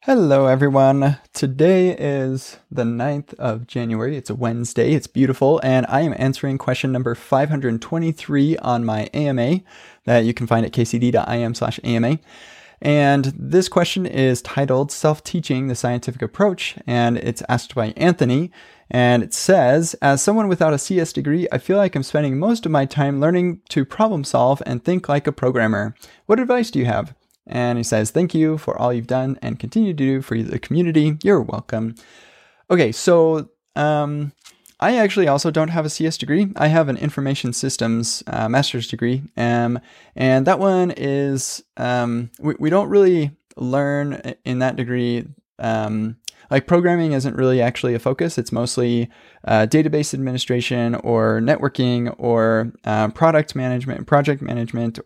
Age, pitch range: 20-39, 120-155 Hz